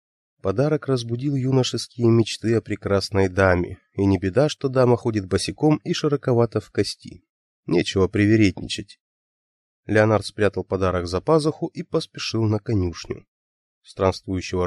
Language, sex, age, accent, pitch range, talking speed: Russian, male, 30-49, native, 95-125 Hz, 125 wpm